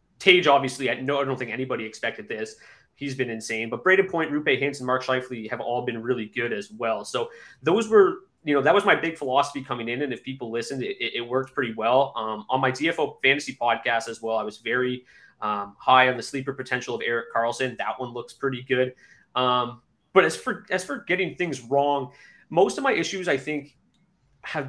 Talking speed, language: 220 wpm, English